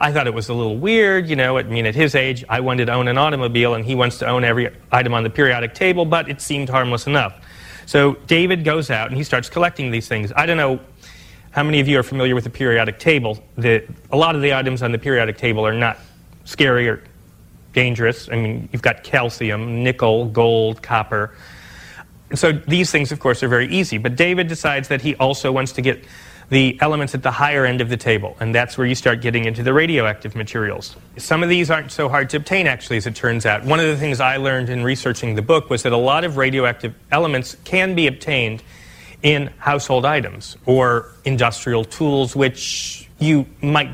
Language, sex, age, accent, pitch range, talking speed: English, male, 30-49, American, 115-145 Hz, 215 wpm